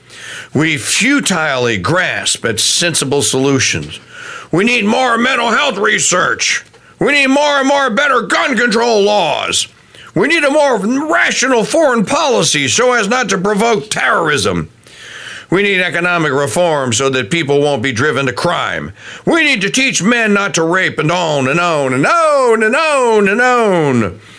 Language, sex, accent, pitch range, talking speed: English, male, American, 135-210 Hz, 155 wpm